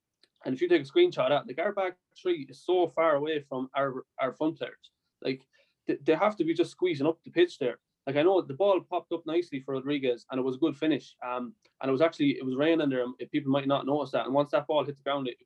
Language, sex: English, male